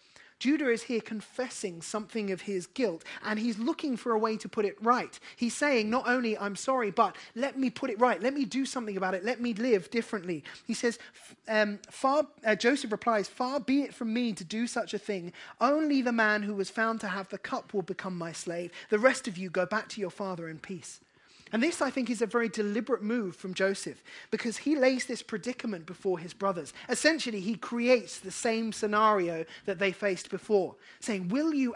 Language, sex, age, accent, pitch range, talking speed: English, male, 20-39, British, 190-245 Hz, 215 wpm